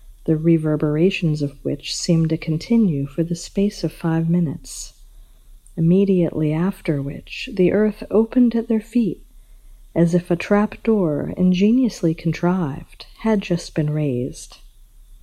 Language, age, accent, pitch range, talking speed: English, 50-69, American, 150-205 Hz, 130 wpm